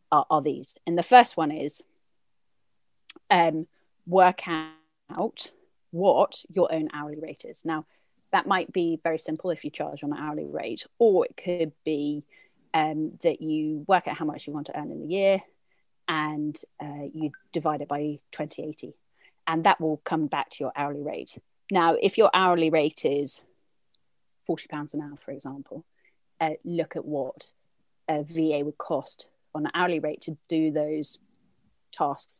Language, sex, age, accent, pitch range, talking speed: English, female, 30-49, British, 150-170 Hz, 170 wpm